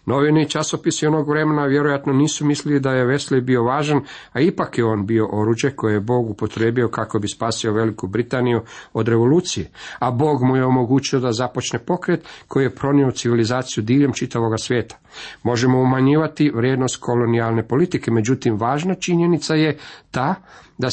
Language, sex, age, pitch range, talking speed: Croatian, male, 50-69, 115-140 Hz, 160 wpm